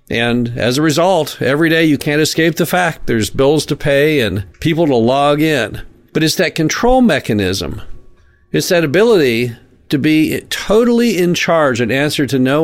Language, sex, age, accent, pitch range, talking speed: English, male, 50-69, American, 120-165 Hz, 175 wpm